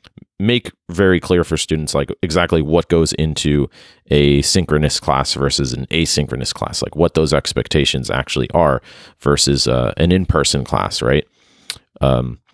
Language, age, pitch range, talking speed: English, 30-49, 70-85 Hz, 145 wpm